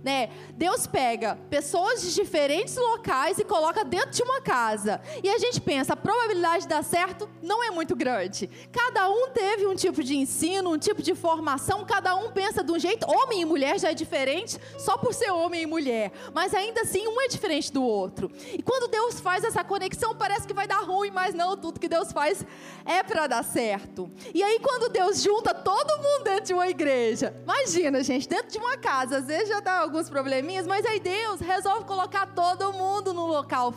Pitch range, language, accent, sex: 320-405 Hz, Portuguese, Brazilian, female